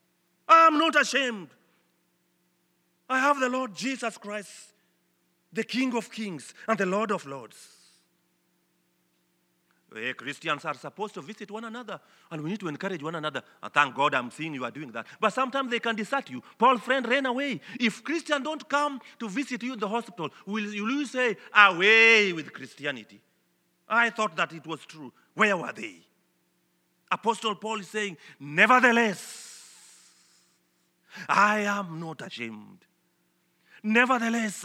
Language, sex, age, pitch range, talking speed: English, male, 40-59, 175-220 Hz, 150 wpm